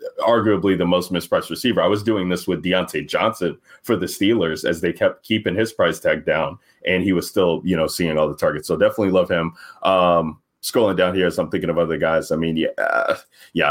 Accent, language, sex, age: American, English, male, 20-39